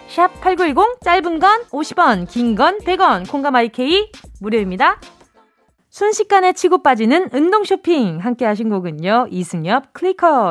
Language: Korean